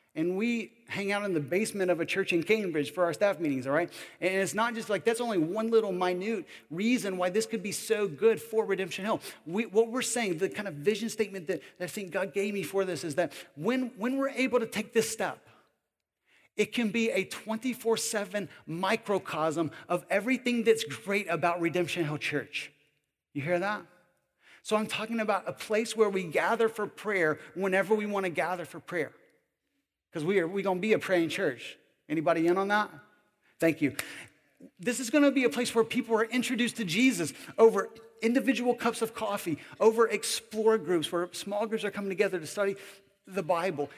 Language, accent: English, American